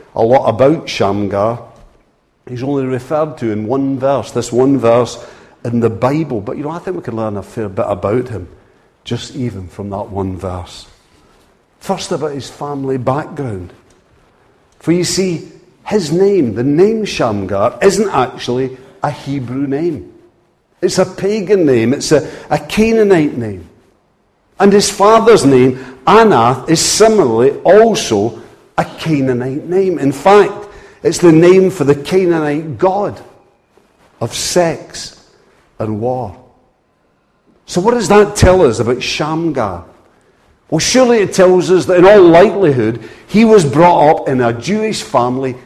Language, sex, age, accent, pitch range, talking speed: English, male, 50-69, British, 115-185 Hz, 145 wpm